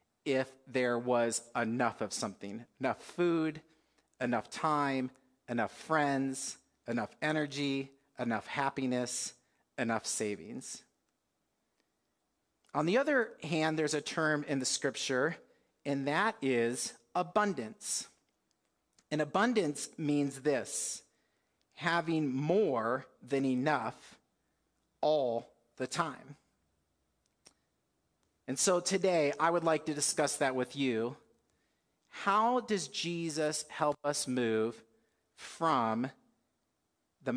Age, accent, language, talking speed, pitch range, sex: 40-59, American, English, 100 wpm, 125-155 Hz, male